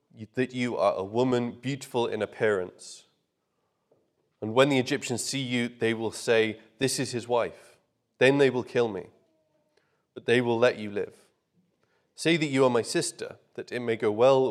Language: English